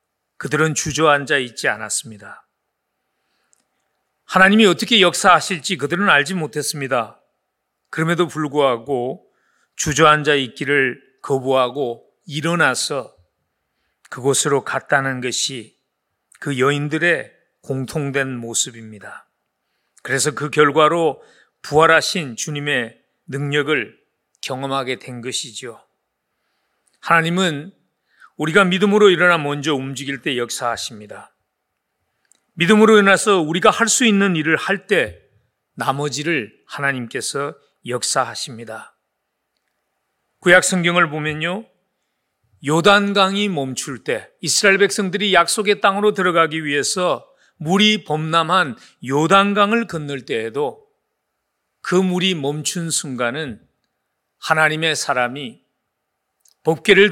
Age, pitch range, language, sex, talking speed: 40-59, 135-185 Hz, English, male, 80 wpm